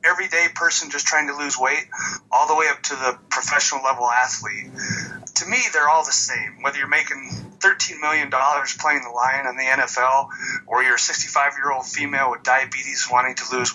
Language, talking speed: English, 190 wpm